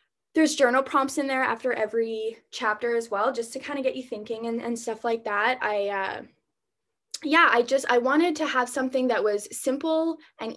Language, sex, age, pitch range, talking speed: English, female, 10-29, 210-275 Hz, 205 wpm